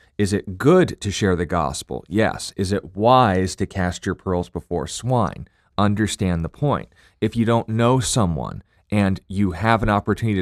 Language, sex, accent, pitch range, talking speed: English, male, American, 90-105 Hz, 175 wpm